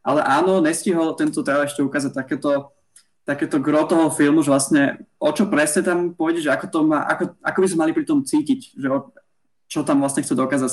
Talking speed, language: 205 wpm, Slovak